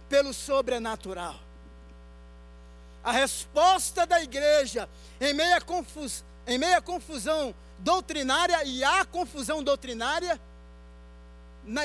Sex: male